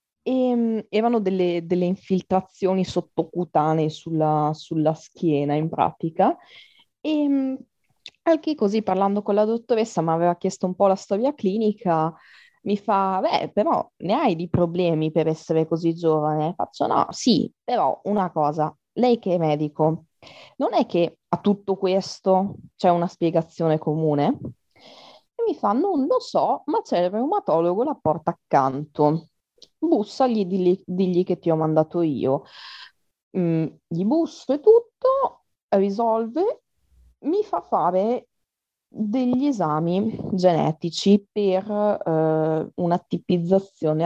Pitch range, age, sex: 160-215 Hz, 20-39, female